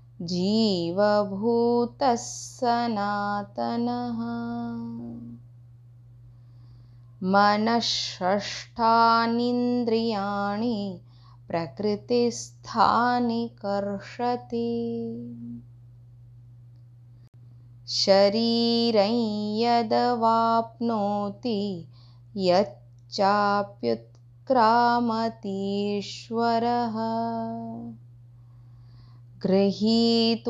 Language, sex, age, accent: Hindi, female, 20-39, native